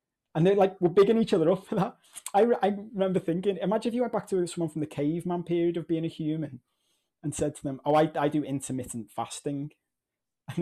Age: 20-39